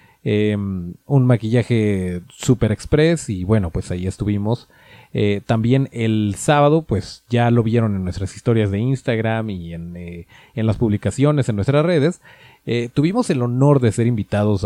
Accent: Mexican